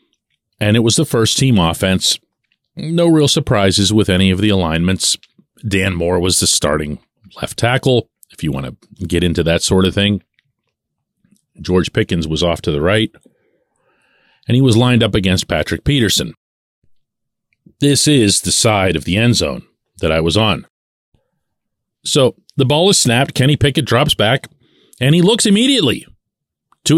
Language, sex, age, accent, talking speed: English, male, 40-59, American, 160 wpm